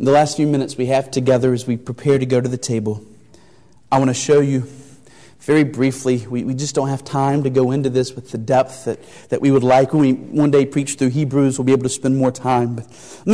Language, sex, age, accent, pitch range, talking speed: English, male, 30-49, American, 115-145 Hz, 250 wpm